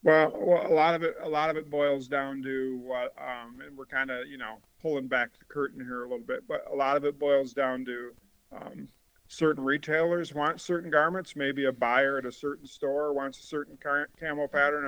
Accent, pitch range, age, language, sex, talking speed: American, 125-145 Hz, 50-69, English, male, 225 wpm